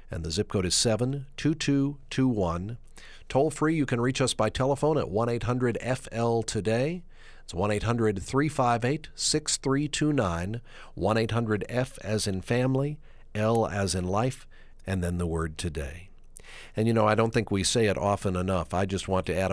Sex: male